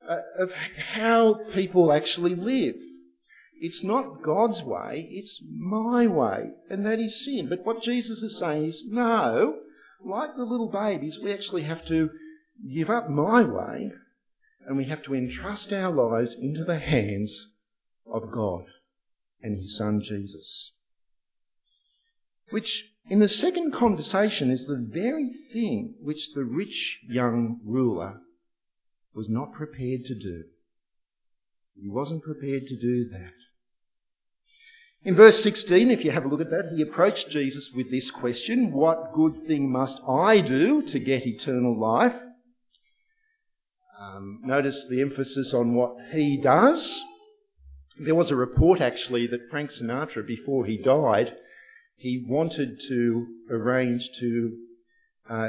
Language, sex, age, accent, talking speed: English, male, 50-69, Australian, 140 wpm